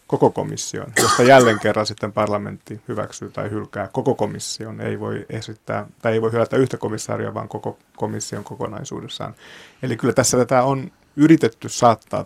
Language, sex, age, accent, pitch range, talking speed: Finnish, male, 30-49, native, 105-120 Hz, 155 wpm